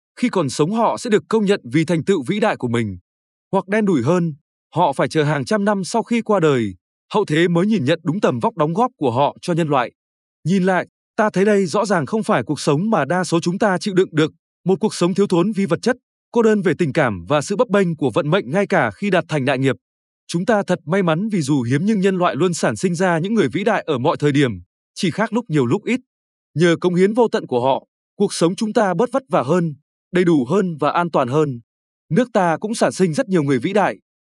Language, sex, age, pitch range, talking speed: Vietnamese, male, 20-39, 155-205 Hz, 265 wpm